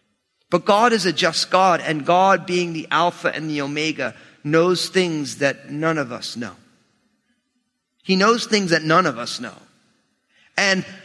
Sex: male